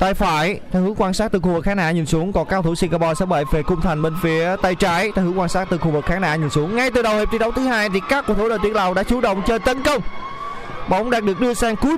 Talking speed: 325 wpm